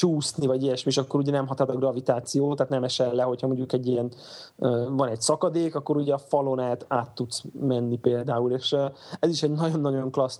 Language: Hungarian